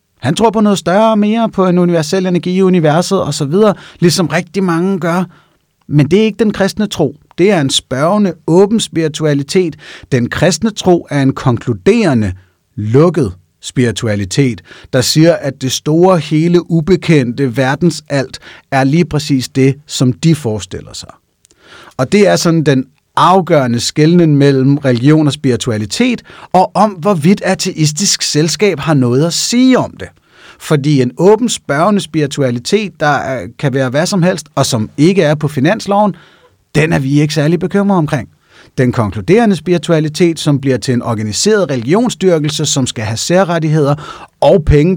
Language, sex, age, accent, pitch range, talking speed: Danish, male, 30-49, native, 135-185 Hz, 155 wpm